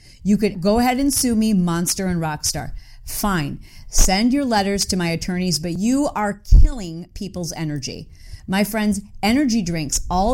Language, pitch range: English, 170-245 Hz